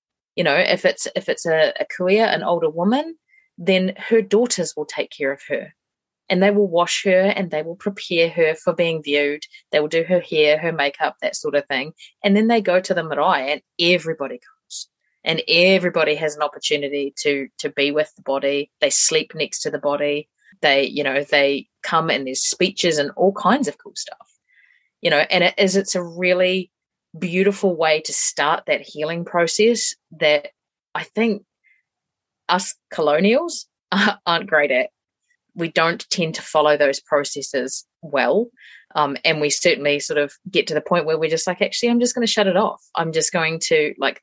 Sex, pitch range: female, 150-200 Hz